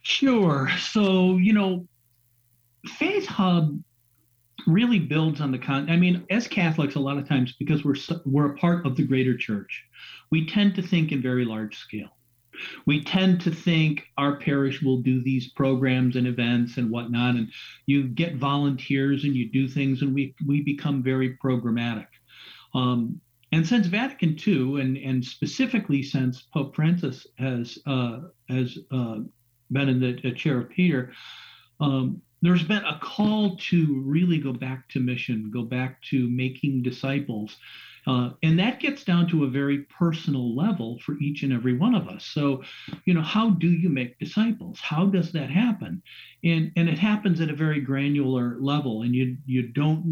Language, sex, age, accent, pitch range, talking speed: English, male, 50-69, American, 130-170 Hz, 170 wpm